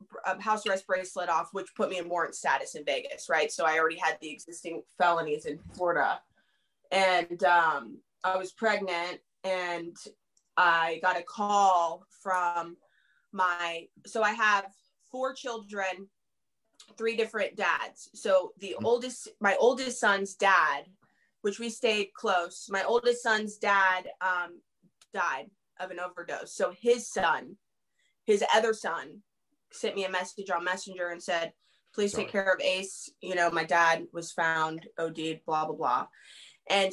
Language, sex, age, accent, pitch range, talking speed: English, female, 20-39, American, 170-205 Hz, 150 wpm